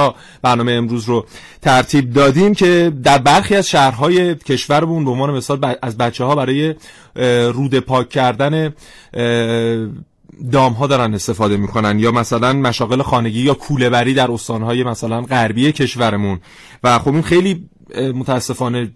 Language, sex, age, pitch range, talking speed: Persian, male, 30-49, 120-145 Hz, 135 wpm